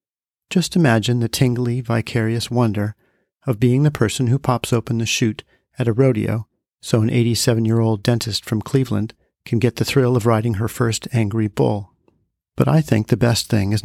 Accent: American